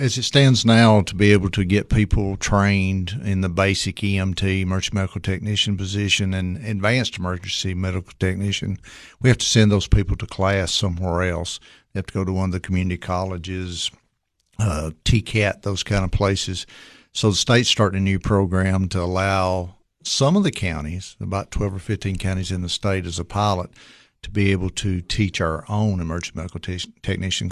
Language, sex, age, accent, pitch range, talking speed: English, male, 60-79, American, 90-105 Hz, 185 wpm